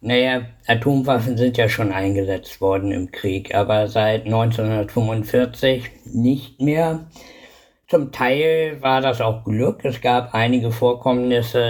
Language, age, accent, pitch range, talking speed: German, 60-79, German, 110-135 Hz, 125 wpm